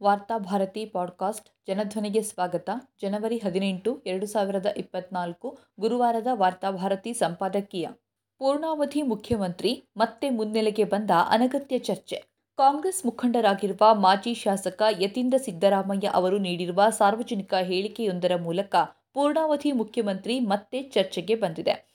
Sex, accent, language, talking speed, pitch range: female, native, Kannada, 95 wpm, 195-240 Hz